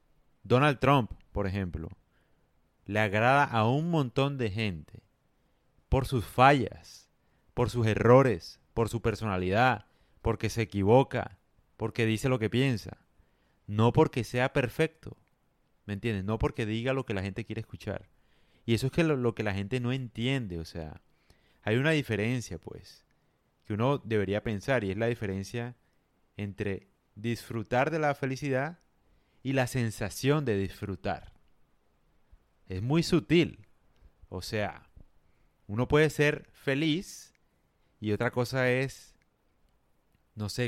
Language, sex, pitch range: Spanish, male, 100-130 Hz